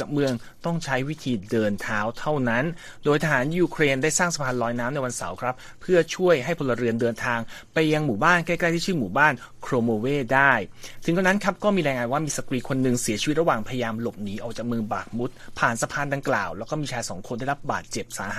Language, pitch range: Thai, 120-160 Hz